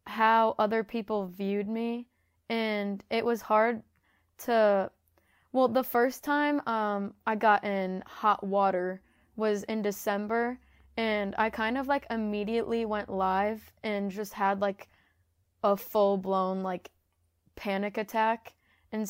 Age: 20-39